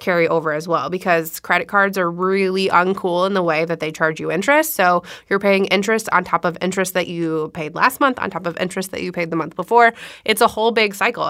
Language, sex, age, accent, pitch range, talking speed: English, female, 20-39, American, 165-195 Hz, 245 wpm